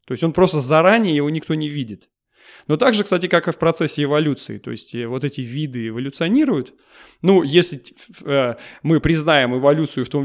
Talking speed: 185 wpm